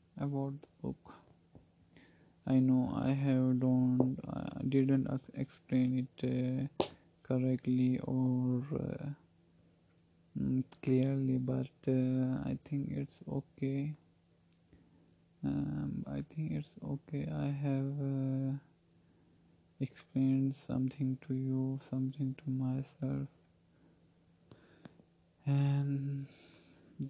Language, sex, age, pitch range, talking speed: English, male, 20-39, 130-140 Hz, 90 wpm